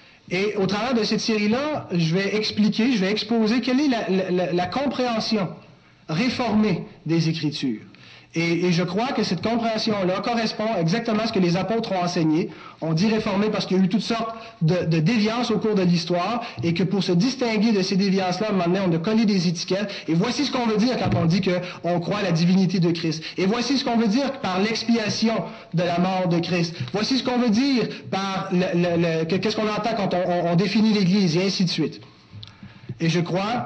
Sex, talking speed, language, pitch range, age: male, 215 wpm, French, 170-220 Hz, 30-49